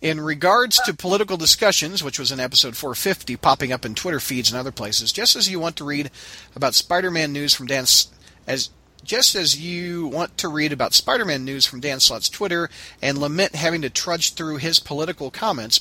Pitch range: 120-160 Hz